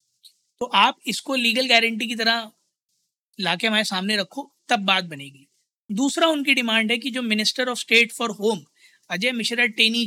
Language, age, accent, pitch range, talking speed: Hindi, 20-39, native, 190-230 Hz, 165 wpm